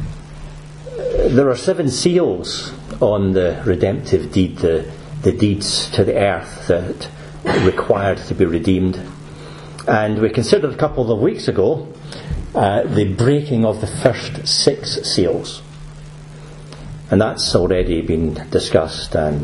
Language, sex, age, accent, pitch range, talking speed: English, male, 50-69, British, 95-150 Hz, 125 wpm